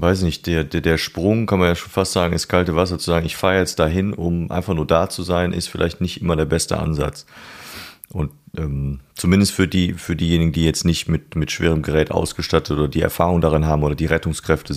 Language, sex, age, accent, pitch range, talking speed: German, male, 30-49, German, 80-95 Hz, 230 wpm